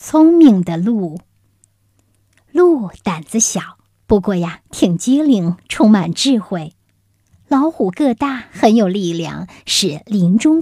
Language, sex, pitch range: Chinese, male, 165-230 Hz